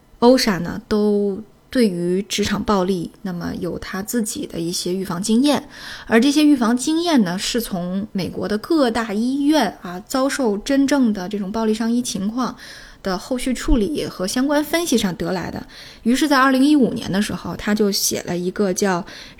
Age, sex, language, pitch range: 10-29, female, Chinese, 195-245 Hz